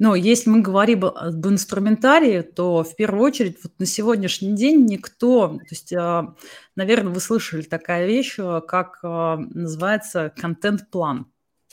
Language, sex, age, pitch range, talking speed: Russian, female, 20-39, 165-205 Hz, 130 wpm